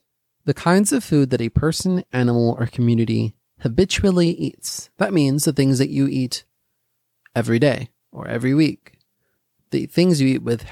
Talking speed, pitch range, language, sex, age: 160 wpm, 115-150 Hz, English, male, 30-49